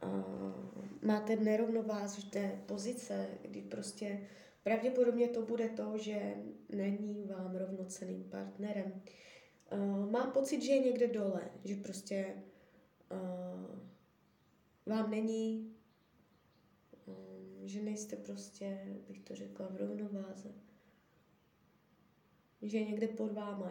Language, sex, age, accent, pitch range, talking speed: Czech, female, 20-39, native, 180-220 Hz, 105 wpm